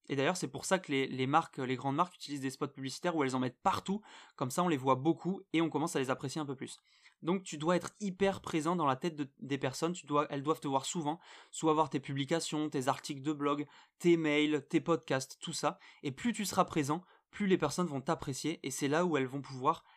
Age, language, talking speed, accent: 20-39, French, 260 wpm, French